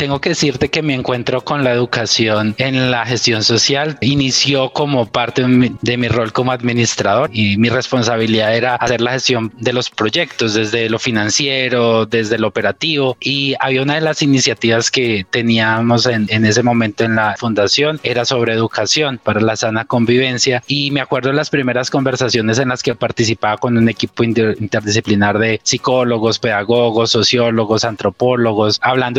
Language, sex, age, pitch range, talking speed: Spanish, male, 20-39, 115-130 Hz, 165 wpm